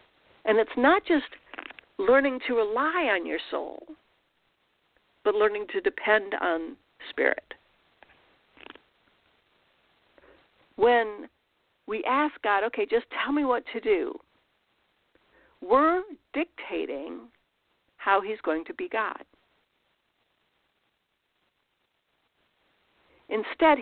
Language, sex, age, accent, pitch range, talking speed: English, female, 50-69, American, 225-375 Hz, 90 wpm